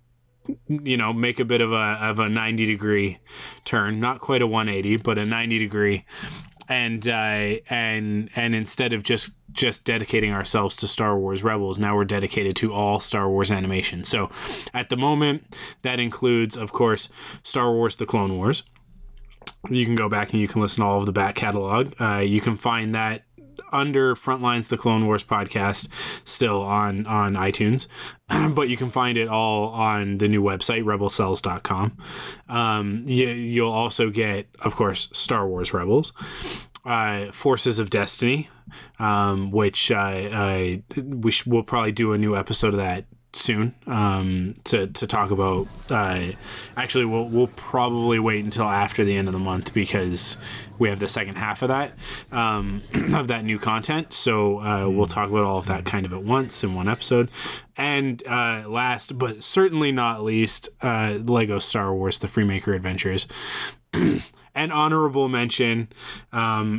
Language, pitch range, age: English, 100-120 Hz, 20-39